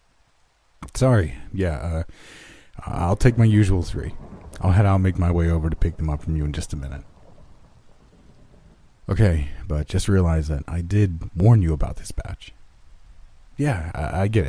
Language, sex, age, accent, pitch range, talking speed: English, male, 40-59, American, 80-100 Hz, 175 wpm